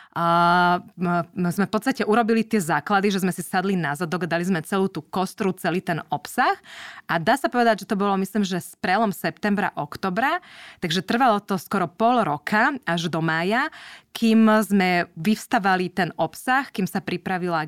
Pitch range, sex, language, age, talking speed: 175-215 Hz, female, Slovak, 20-39, 170 wpm